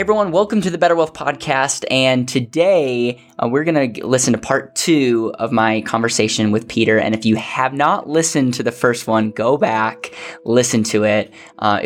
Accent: American